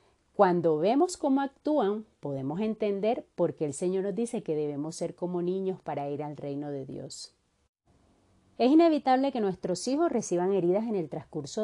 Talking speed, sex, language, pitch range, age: 170 wpm, female, Spanish, 155-220 Hz, 40-59